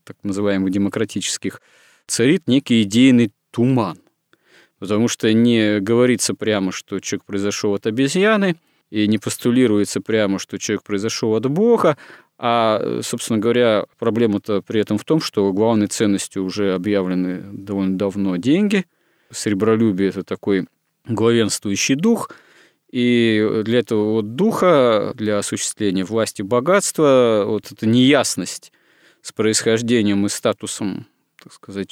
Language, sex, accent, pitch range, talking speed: Russian, male, native, 100-120 Hz, 120 wpm